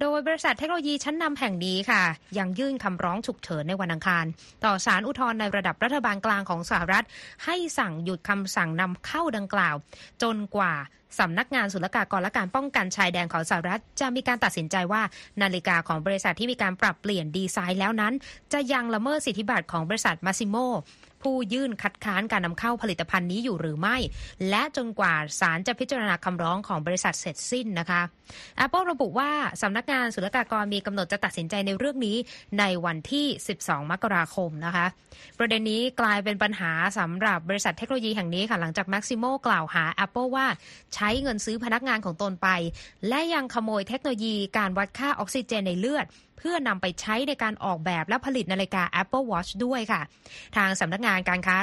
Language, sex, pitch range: Thai, female, 185-245 Hz